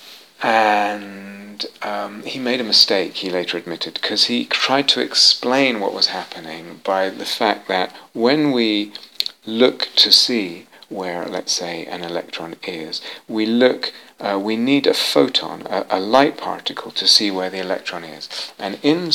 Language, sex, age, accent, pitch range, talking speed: English, male, 40-59, British, 95-110 Hz, 160 wpm